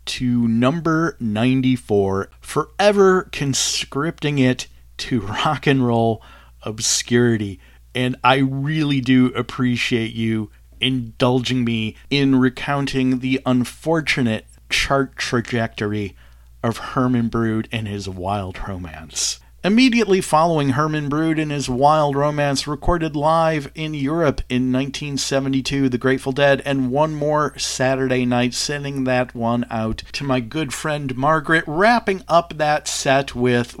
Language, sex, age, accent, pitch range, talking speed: English, male, 40-59, American, 115-150 Hz, 120 wpm